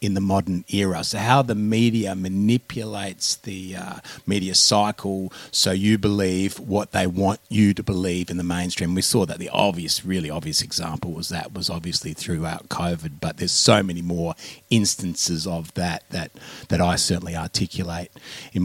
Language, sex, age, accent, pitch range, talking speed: English, male, 30-49, Australian, 100-150 Hz, 170 wpm